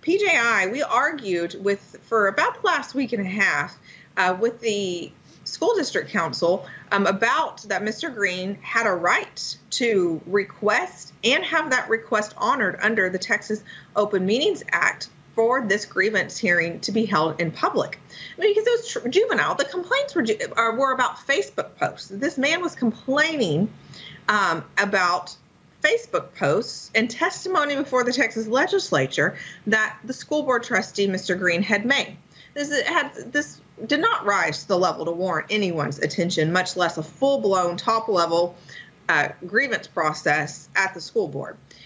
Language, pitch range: English, 185-275 Hz